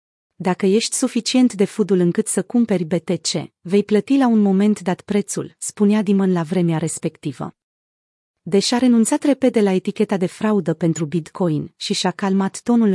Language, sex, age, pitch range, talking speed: Romanian, female, 30-49, 175-215 Hz, 160 wpm